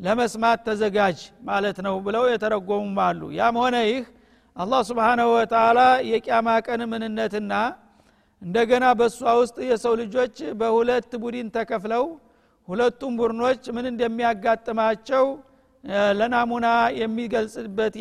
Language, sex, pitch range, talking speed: Amharic, male, 225-250 Hz, 105 wpm